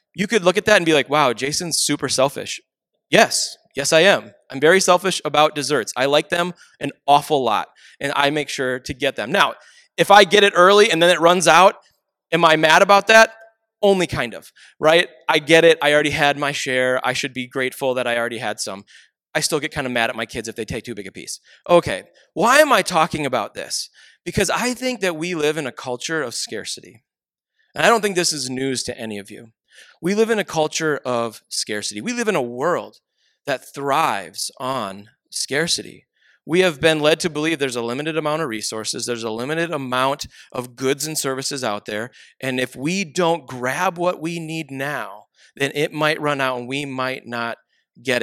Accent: American